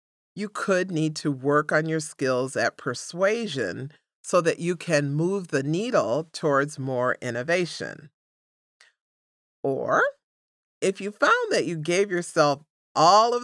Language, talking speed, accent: English, 135 wpm, American